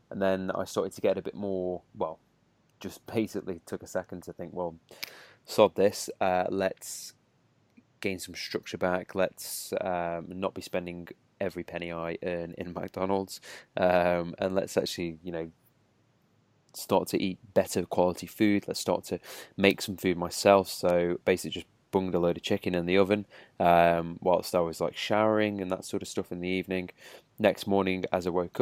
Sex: male